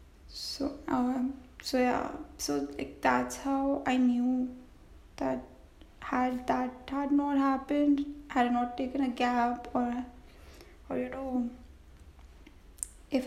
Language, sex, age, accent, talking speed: English, female, 10-29, Indian, 115 wpm